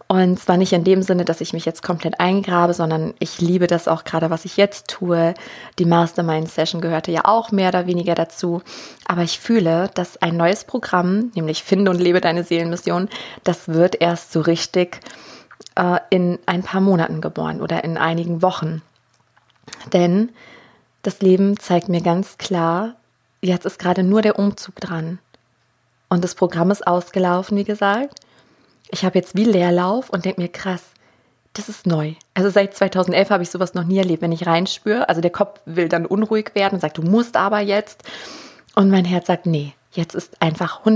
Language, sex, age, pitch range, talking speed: German, female, 20-39, 170-195 Hz, 185 wpm